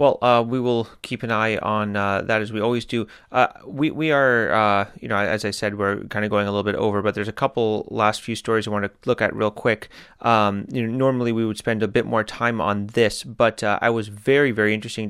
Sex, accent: male, American